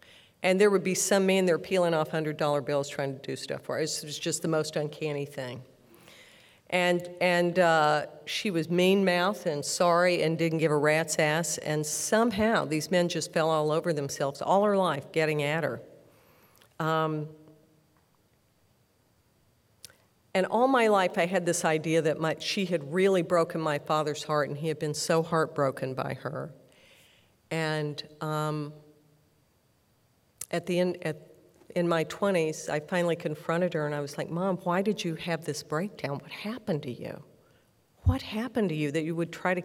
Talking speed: 175 wpm